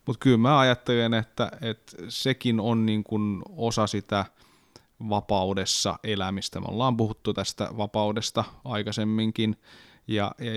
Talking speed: 115 wpm